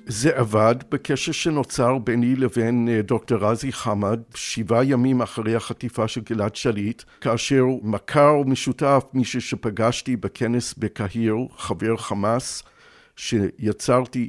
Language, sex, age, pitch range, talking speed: Hebrew, male, 60-79, 110-125 Hz, 110 wpm